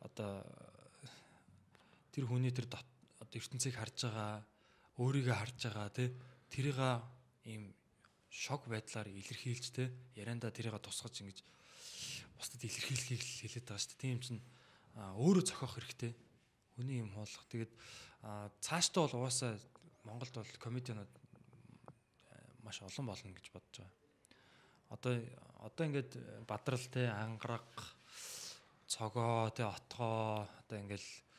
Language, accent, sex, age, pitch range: Korean, native, male, 20-39, 105-125 Hz